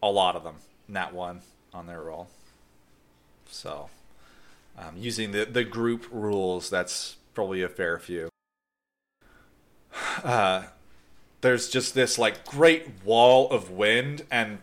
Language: English